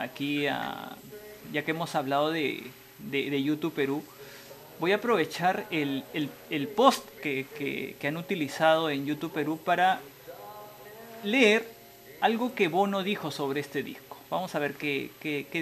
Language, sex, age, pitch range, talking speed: Spanish, male, 30-49, 145-210 Hz, 140 wpm